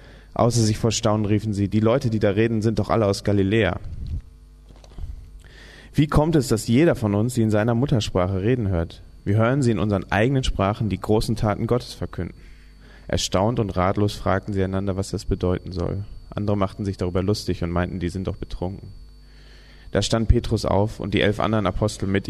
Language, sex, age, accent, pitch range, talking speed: German, male, 30-49, German, 95-115 Hz, 195 wpm